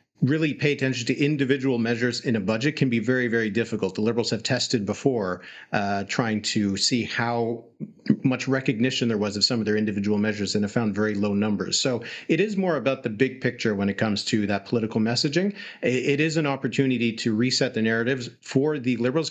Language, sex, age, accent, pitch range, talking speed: English, male, 40-59, American, 110-135 Hz, 205 wpm